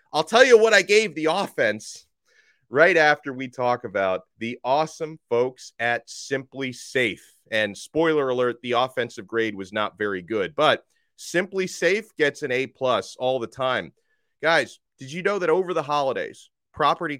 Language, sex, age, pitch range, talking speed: English, male, 30-49, 125-170 Hz, 165 wpm